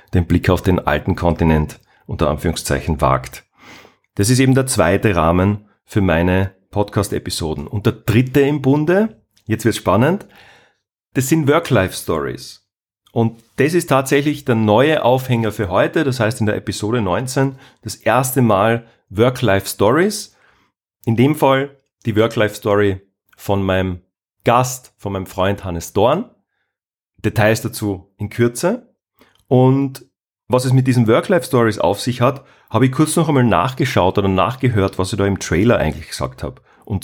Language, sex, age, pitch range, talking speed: German, male, 40-59, 95-125 Hz, 150 wpm